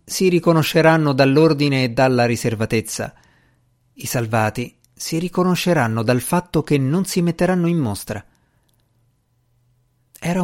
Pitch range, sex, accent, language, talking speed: 110-160 Hz, male, native, Italian, 110 wpm